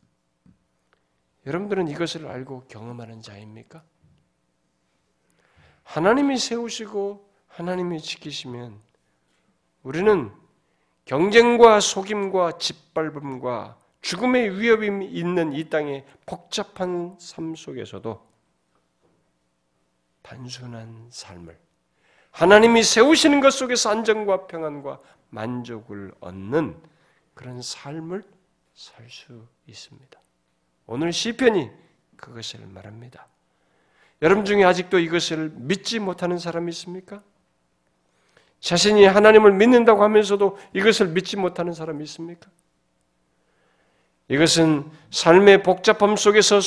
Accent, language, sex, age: native, Korean, male, 40-59